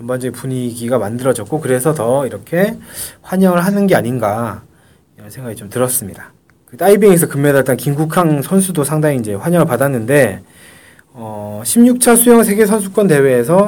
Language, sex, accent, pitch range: Korean, male, native, 125-175 Hz